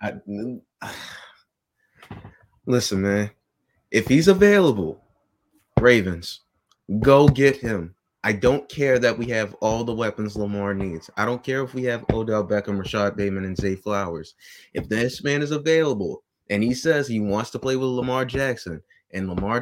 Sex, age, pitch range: male, 20-39, 110-150 Hz